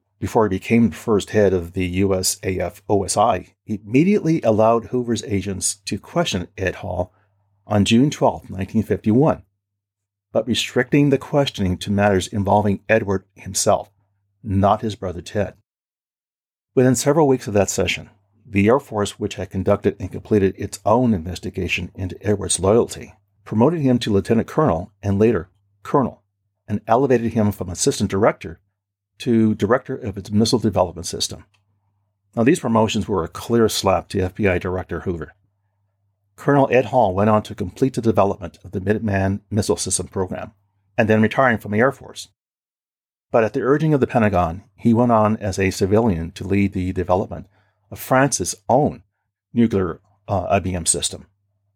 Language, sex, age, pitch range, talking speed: English, male, 40-59, 95-115 Hz, 155 wpm